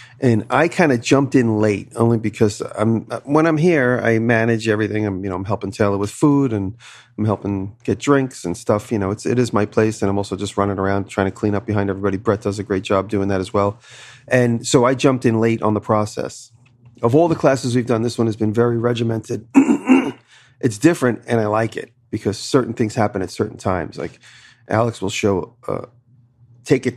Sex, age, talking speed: male, 40-59, 225 wpm